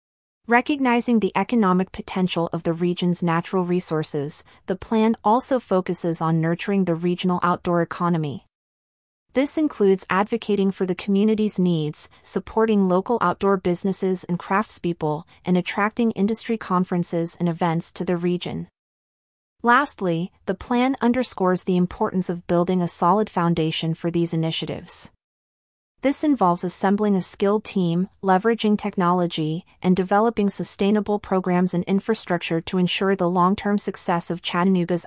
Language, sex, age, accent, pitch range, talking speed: English, female, 30-49, American, 175-210 Hz, 130 wpm